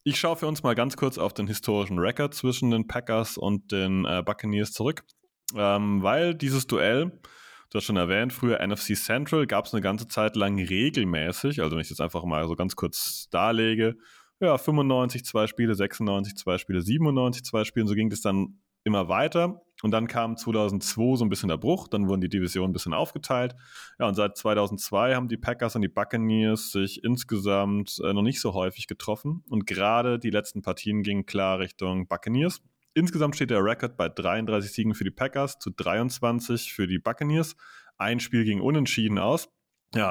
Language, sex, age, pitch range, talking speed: German, male, 20-39, 100-125 Hz, 190 wpm